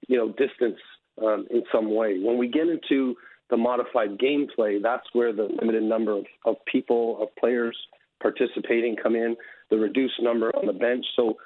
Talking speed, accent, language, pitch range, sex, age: 180 wpm, American, English, 110-125 Hz, male, 40-59